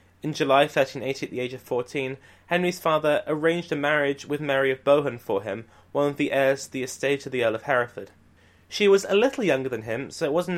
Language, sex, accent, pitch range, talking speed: English, male, British, 125-175 Hz, 235 wpm